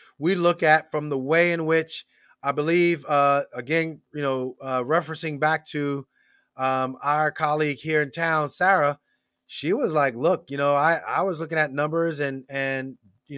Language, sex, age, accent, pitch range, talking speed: English, male, 30-49, American, 140-180 Hz, 180 wpm